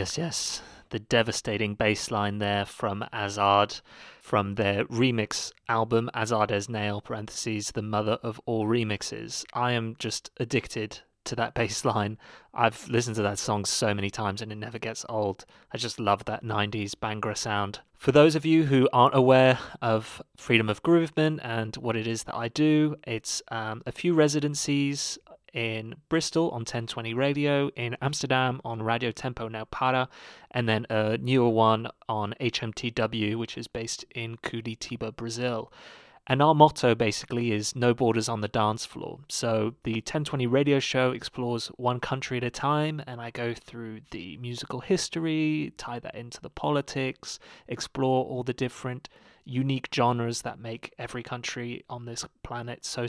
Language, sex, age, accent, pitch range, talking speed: English, male, 30-49, British, 110-130 Hz, 165 wpm